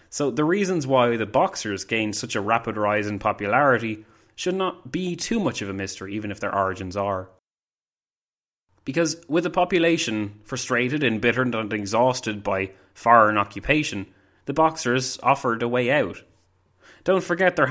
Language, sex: English, male